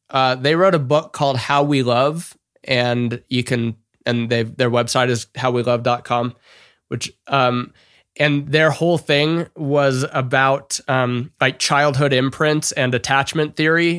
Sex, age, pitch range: male, 20-39, 125-150 Hz